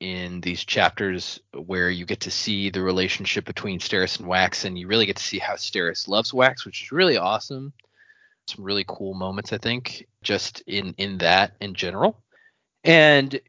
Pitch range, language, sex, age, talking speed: 100-135 Hz, English, male, 20-39, 180 wpm